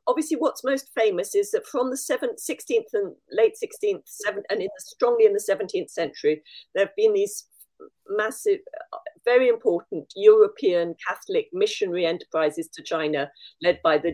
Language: English